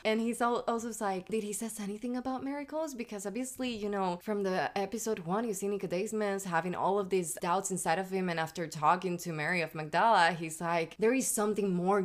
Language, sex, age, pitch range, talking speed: English, female, 20-39, 175-220 Hz, 210 wpm